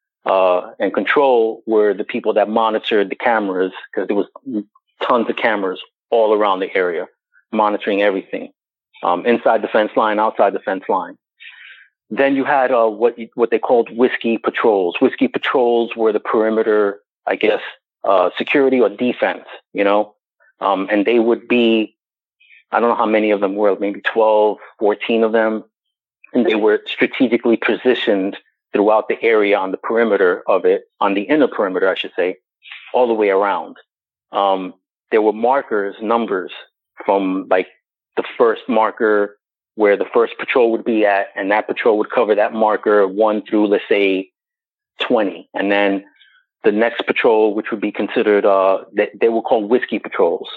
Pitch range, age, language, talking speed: 105-135 Hz, 30-49, English, 165 wpm